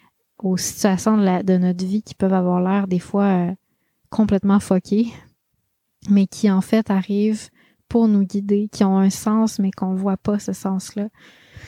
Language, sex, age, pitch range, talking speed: French, female, 20-39, 190-220 Hz, 175 wpm